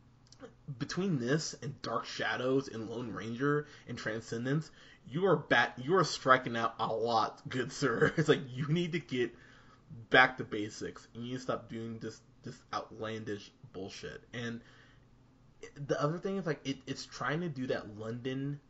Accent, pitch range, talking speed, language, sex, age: American, 115-145 Hz, 170 wpm, English, male, 20-39